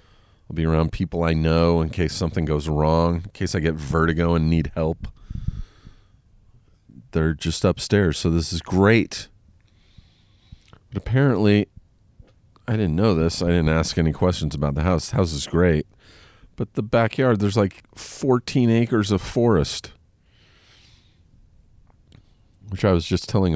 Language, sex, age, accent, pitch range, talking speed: English, male, 40-59, American, 80-105 Hz, 150 wpm